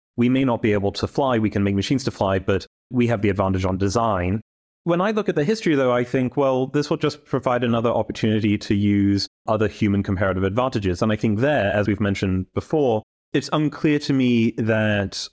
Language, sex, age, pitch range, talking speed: English, male, 30-49, 100-115 Hz, 215 wpm